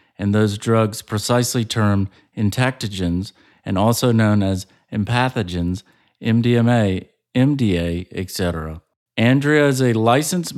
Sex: male